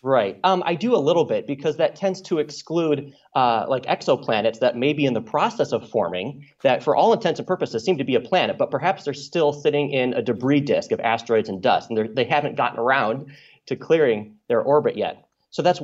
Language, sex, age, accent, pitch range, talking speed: English, male, 30-49, American, 125-175 Hz, 225 wpm